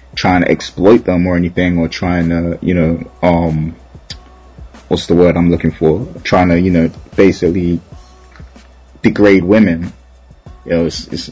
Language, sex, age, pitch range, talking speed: English, male, 20-39, 80-90 Hz, 155 wpm